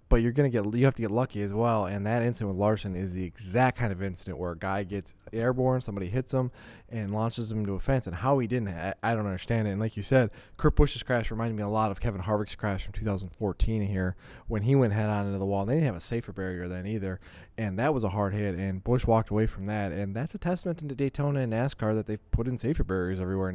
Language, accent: English, American